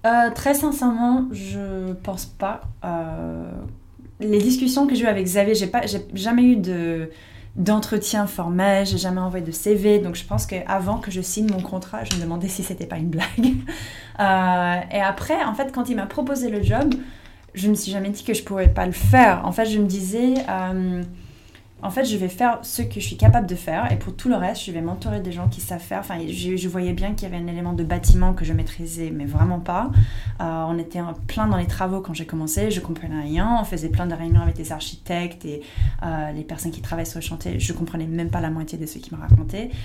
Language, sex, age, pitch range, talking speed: French, female, 20-39, 160-205 Hz, 235 wpm